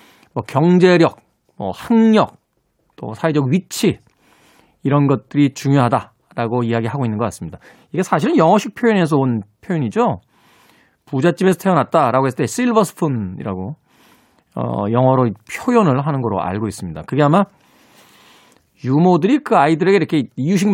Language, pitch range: Korean, 130-205 Hz